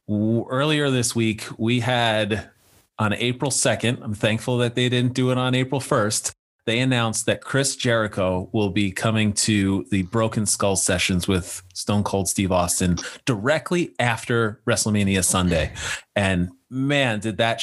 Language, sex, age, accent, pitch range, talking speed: English, male, 30-49, American, 100-125 Hz, 150 wpm